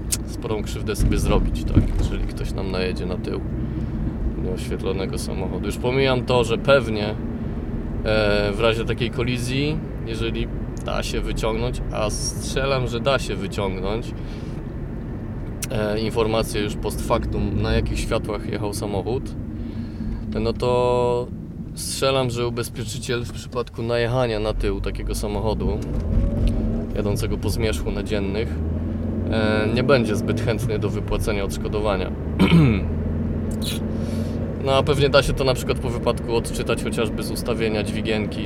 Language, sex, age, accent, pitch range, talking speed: Polish, male, 20-39, native, 100-115 Hz, 125 wpm